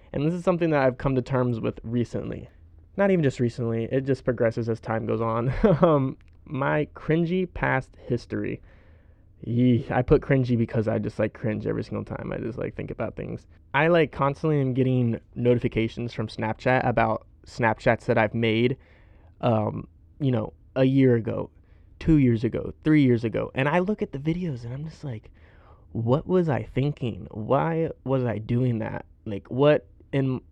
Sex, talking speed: male, 180 wpm